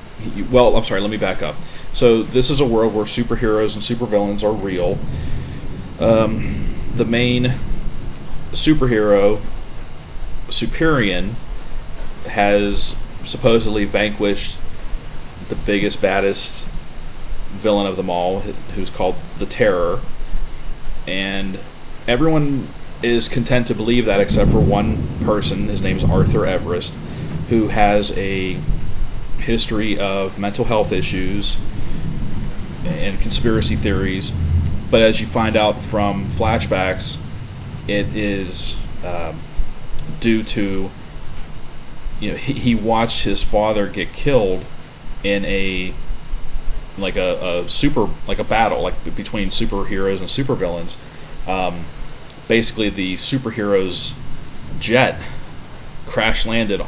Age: 40-59